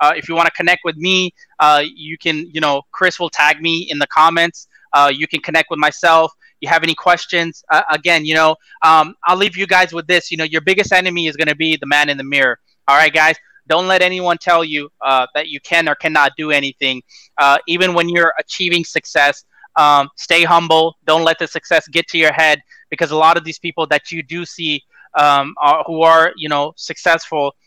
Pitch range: 145-170 Hz